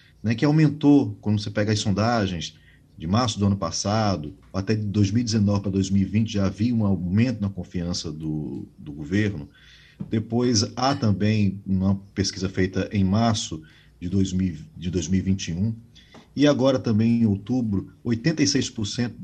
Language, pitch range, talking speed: Portuguese, 95-115 Hz, 140 wpm